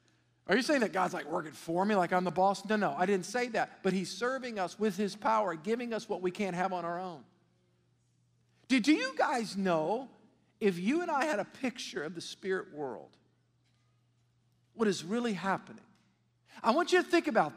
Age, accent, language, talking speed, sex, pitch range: 50-69, American, English, 205 wpm, male, 185-240 Hz